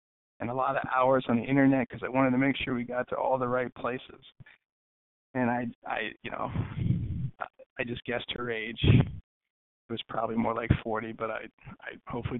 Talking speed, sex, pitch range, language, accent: 200 wpm, male, 120-140 Hz, English, American